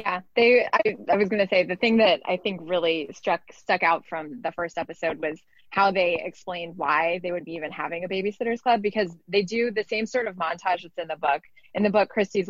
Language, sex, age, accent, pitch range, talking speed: English, female, 20-39, American, 170-210 Hz, 240 wpm